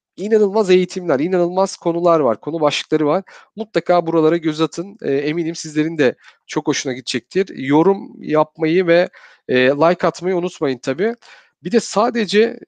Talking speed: 135 wpm